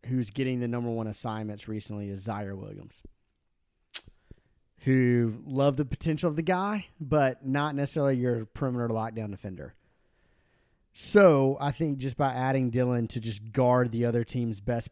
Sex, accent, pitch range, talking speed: male, American, 110-135 Hz, 155 wpm